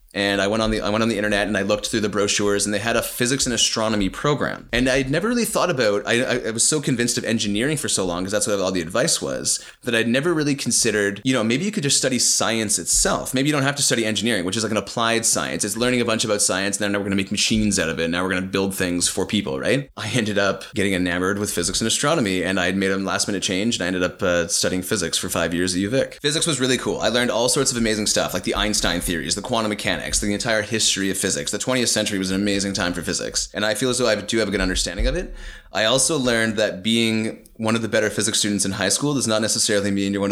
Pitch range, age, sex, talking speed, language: 95-120 Hz, 30-49, male, 290 wpm, English